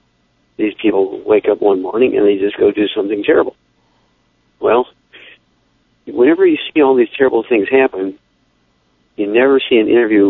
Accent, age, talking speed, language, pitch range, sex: American, 50-69, 155 wpm, English, 320-405 Hz, male